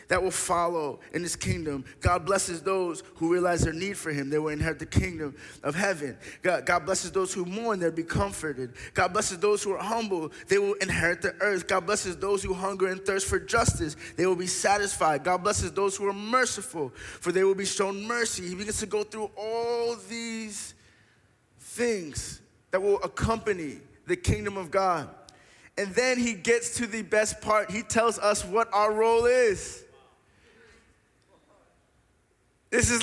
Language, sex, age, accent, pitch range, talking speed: English, male, 20-39, American, 175-245 Hz, 180 wpm